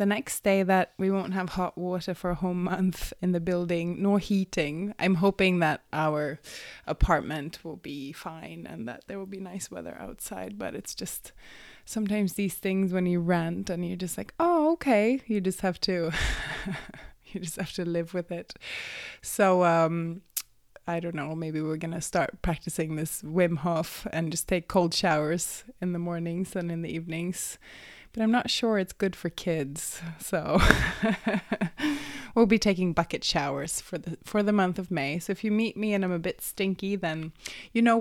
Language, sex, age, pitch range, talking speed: English, female, 20-39, 170-195 Hz, 190 wpm